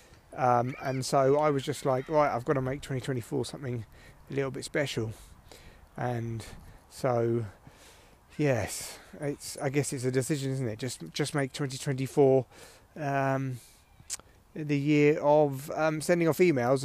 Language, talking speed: English, 155 wpm